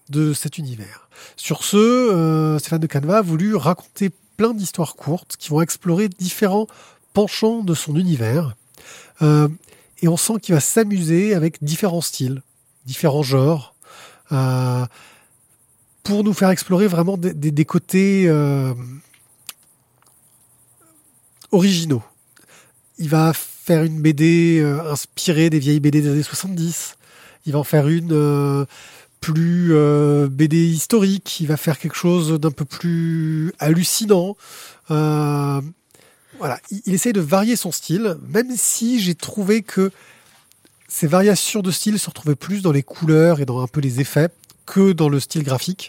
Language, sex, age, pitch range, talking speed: French, male, 20-39, 145-185 Hz, 150 wpm